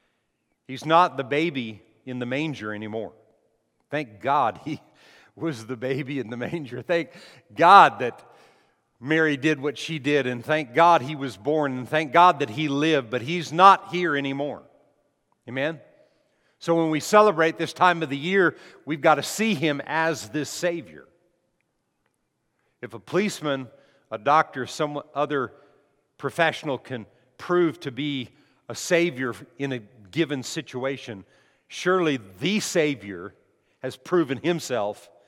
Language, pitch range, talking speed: English, 120-160 Hz, 145 wpm